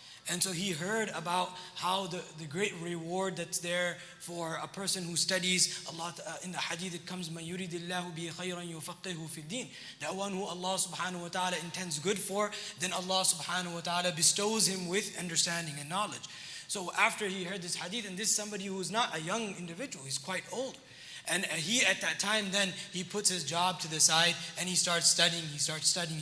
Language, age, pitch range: English, 20-39, 170-210 Hz